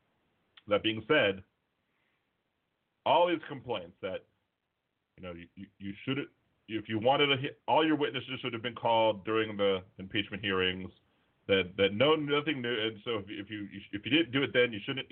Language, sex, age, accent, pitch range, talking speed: English, male, 40-59, American, 95-125 Hz, 180 wpm